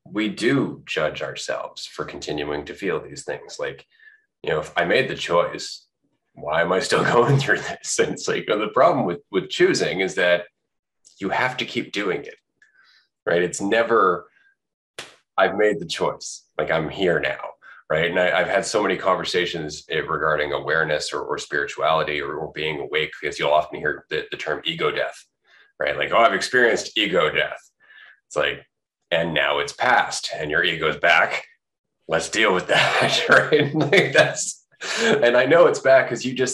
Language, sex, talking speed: English, male, 180 wpm